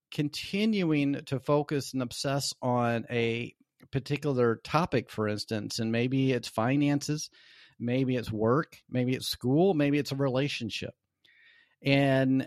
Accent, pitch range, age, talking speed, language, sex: American, 115-145 Hz, 40-59, 125 wpm, English, male